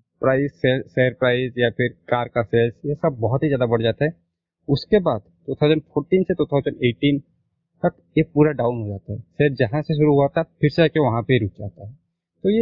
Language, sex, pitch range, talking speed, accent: Hindi, male, 120-155 Hz, 210 wpm, native